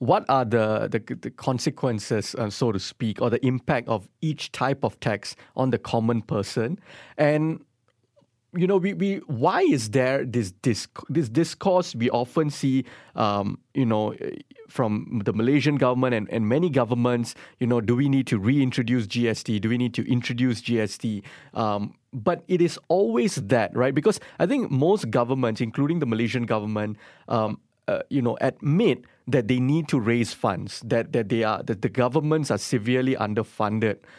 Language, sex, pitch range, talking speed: English, male, 115-145 Hz, 175 wpm